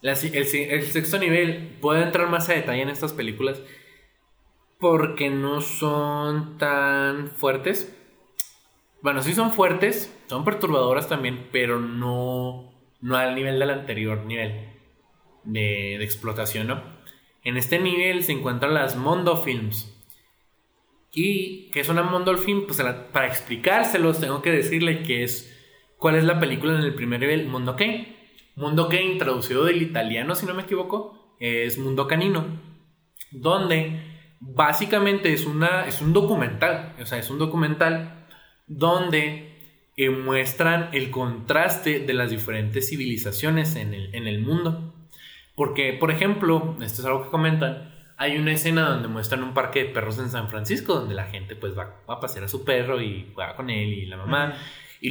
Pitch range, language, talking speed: 125-165 Hz, Spanish, 160 wpm